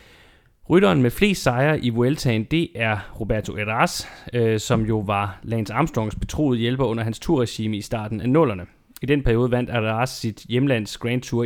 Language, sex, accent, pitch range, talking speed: Danish, male, native, 105-130 Hz, 180 wpm